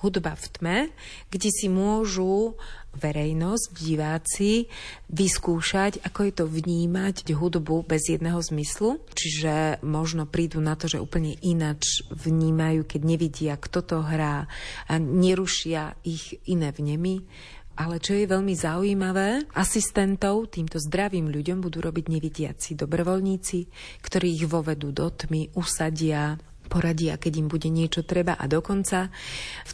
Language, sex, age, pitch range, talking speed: Slovak, female, 30-49, 160-185 Hz, 130 wpm